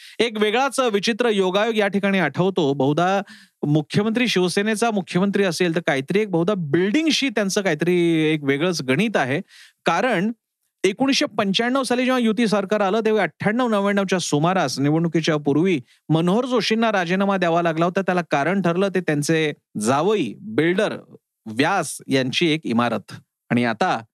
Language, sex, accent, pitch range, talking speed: Marathi, male, native, 150-200 Hz, 140 wpm